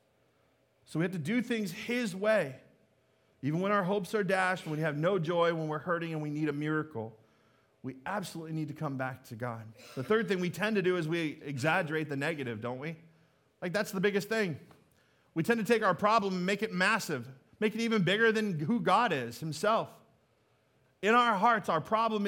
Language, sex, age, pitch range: English, male, 40-59, 165-230 Hz